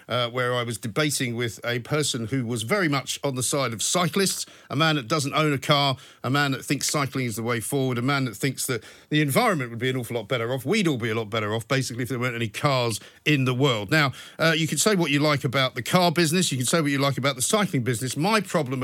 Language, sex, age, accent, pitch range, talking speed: English, male, 50-69, British, 130-160 Hz, 275 wpm